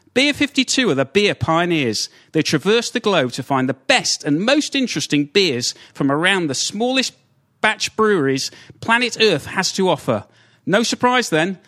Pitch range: 140-230 Hz